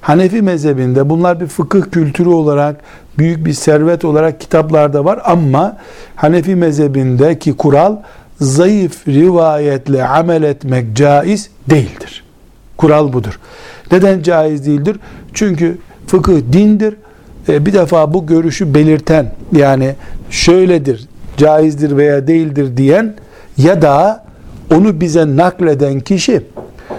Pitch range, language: 145-185 Hz, Turkish